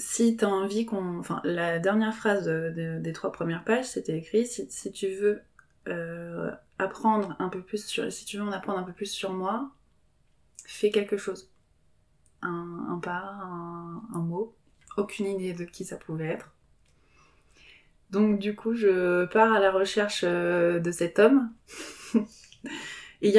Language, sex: French, female